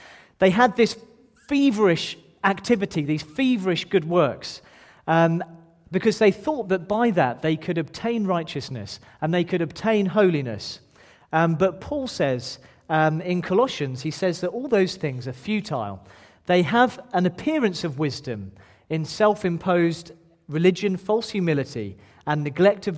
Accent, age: British, 40-59